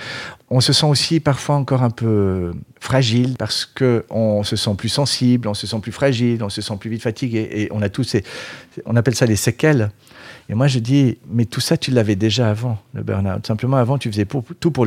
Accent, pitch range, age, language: French, 100-125 Hz, 50-69, French